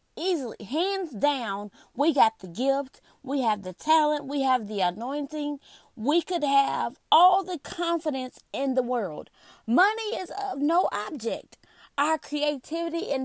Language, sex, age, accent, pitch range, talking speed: English, female, 30-49, American, 235-330 Hz, 145 wpm